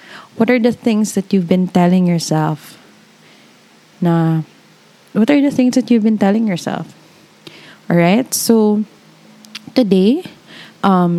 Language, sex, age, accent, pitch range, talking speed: English, female, 20-39, Filipino, 175-220 Hz, 125 wpm